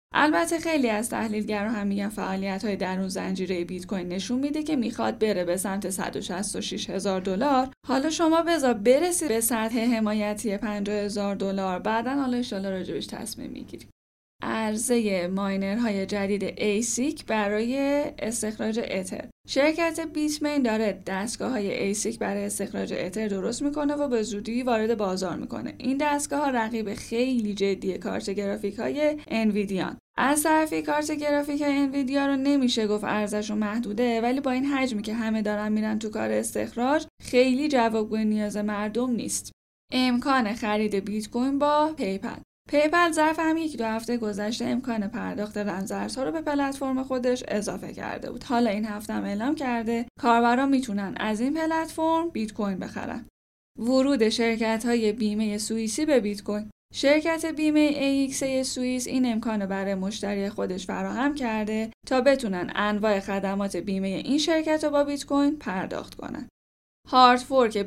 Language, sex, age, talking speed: Persian, female, 10-29, 150 wpm